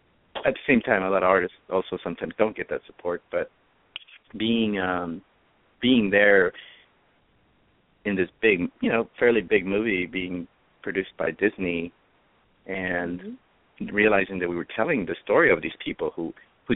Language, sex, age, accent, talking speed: English, male, 30-49, American, 160 wpm